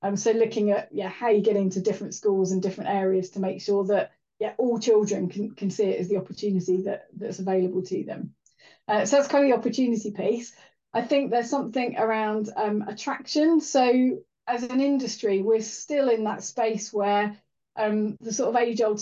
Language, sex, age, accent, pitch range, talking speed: English, female, 20-39, British, 200-230 Hz, 200 wpm